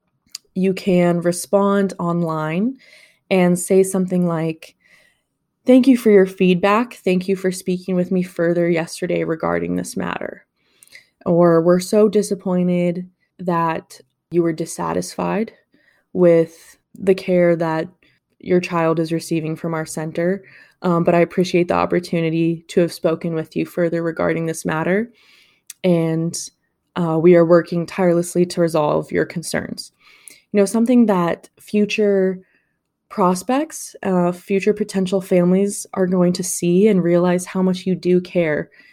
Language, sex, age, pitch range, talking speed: English, female, 20-39, 170-195 Hz, 135 wpm